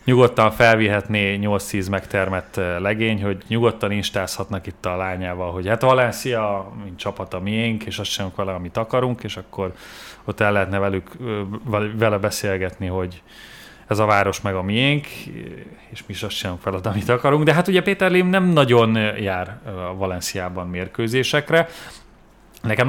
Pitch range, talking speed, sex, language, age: 95-120 Hz, 150 wpm, male, Hungarian, 30-49